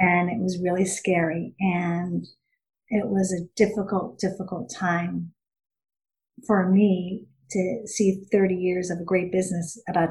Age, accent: 50-69, American